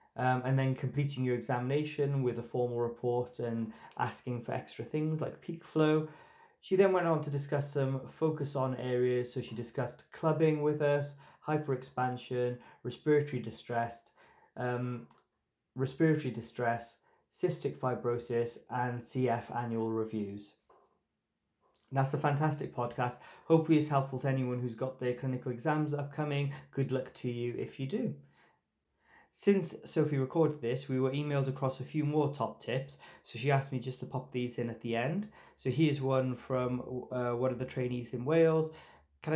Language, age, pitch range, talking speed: English, 20-39, 125-145 Hz, 160 wpm